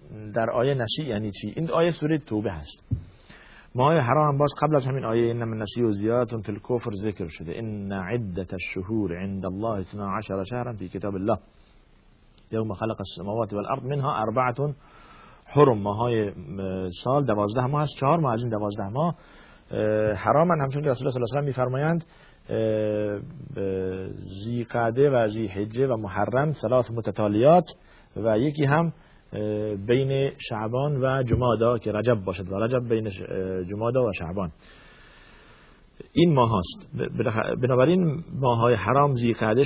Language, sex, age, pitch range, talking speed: Persian, male, 50-69, 100-130 Hz, 140 wpm